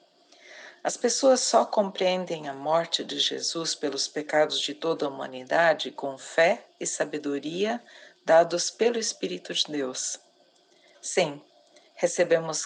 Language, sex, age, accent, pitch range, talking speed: Portuguese, female, 50-69, Brazilian, 150-190 Hz, 120 wpm